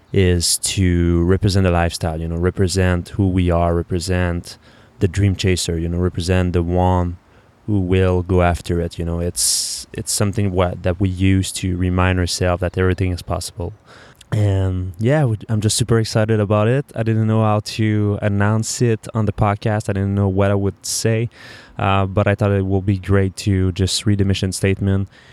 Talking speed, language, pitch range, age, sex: 190 wpm, English, 90-105 Hz, 20-39, male